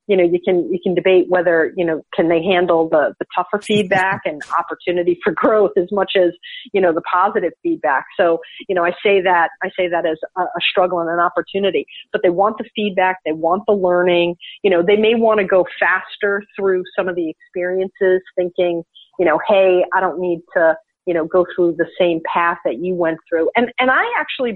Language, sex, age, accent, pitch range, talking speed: English, female, 40-59, American, 175-220 Hz, 220 wpm